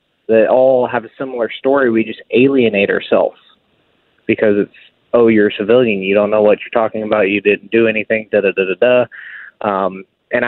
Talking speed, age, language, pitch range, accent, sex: 195 wpm, 20-39, English, 110-130 Hz, American, male